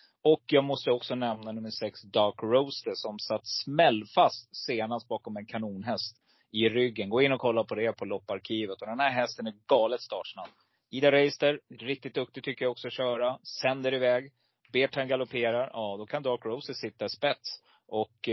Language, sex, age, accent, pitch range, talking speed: Swedish, male, 30-49, native, 110-135 Hz, 175 wpm